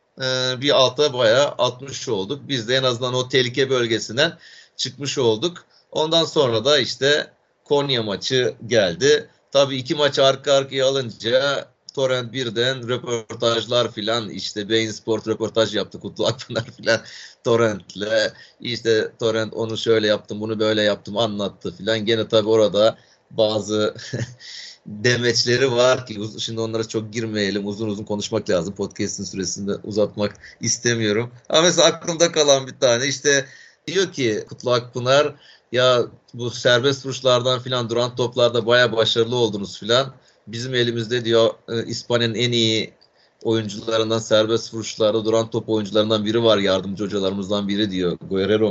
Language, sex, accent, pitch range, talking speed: Turkish, male, native, 105-125 Hz, 135 wpm